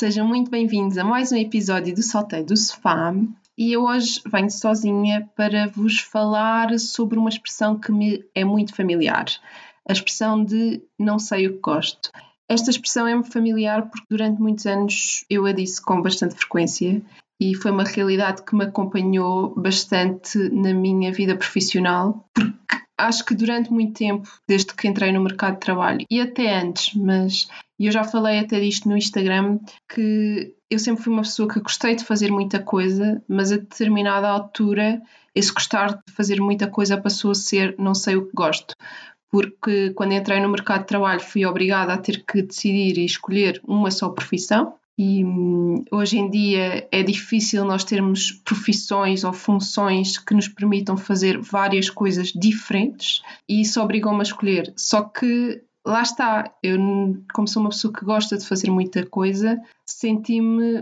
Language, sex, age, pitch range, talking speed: Portuguese, female, 20-39, 195-220 Hz, 170 wpm